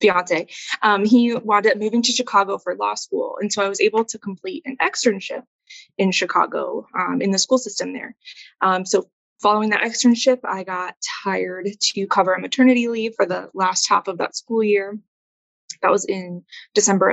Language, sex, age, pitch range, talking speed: English, female, 20-39, 195-250 Hz, 180 wpm